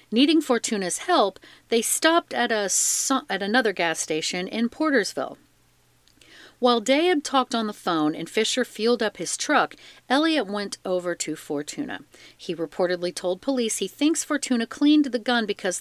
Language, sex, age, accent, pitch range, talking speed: English, female, 40-59, American, 180-260 Hz, 160 wpm